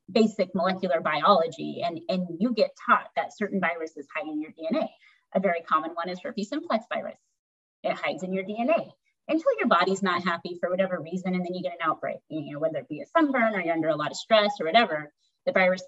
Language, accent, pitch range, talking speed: English, American, 180-225 Hz, 225 wpm